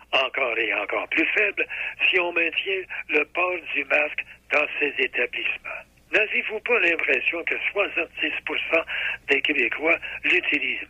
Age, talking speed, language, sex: 60-79, 125 wpm, French, male